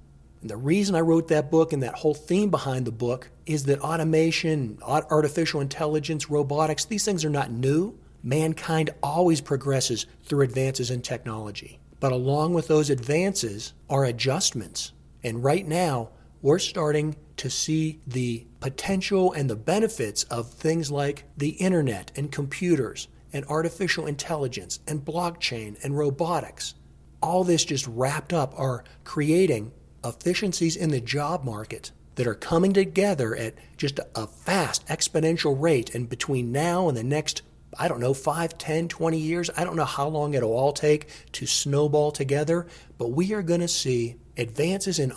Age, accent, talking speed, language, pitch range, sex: 40-59, American, 155 wpm, English, 130-165 Hz, male